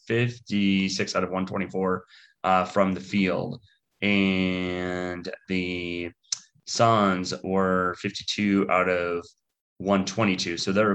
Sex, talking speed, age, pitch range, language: male, 100 wpm, 30-49, 90-105 Hz, English